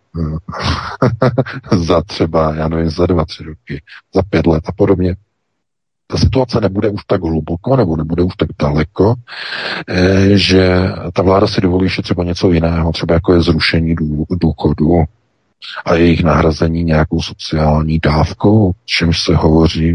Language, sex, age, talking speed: Czech, male, 50-69, 140 wpm